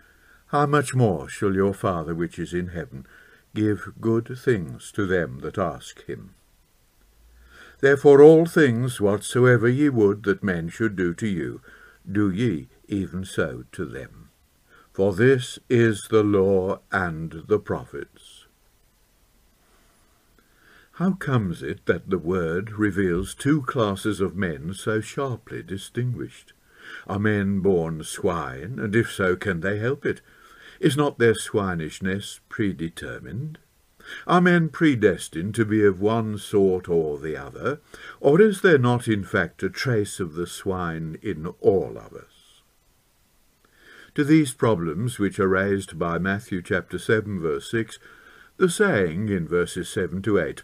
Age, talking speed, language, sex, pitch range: 60-79, 140 wpm, English, male, 95-125 Hz